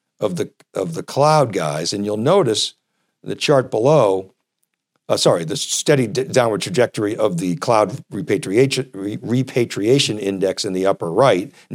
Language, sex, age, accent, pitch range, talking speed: English, male, 50-69, American, 105-140 Hz, 150 wpm